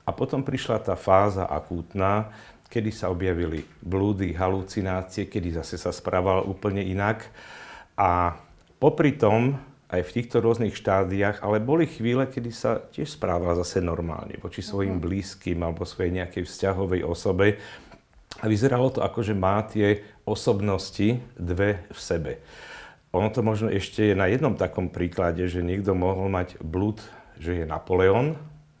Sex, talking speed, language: male, 145 wpm, Slovak